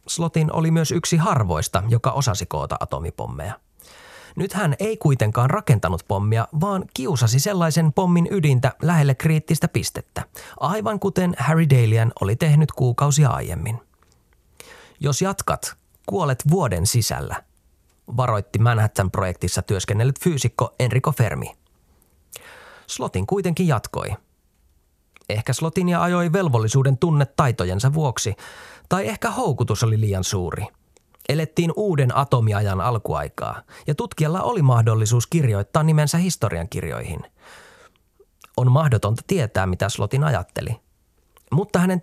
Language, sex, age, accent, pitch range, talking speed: Finnish, male, 30-49, native, 105-160 Hz, 110 wpm